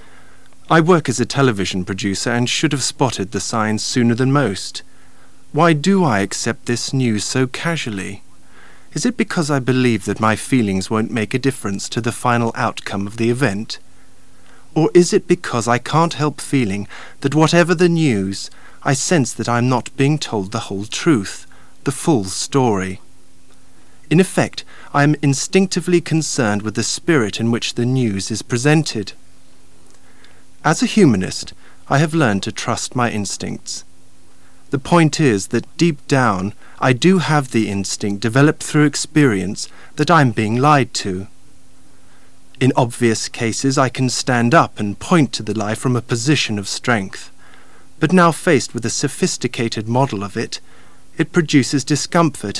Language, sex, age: English, male, 40-59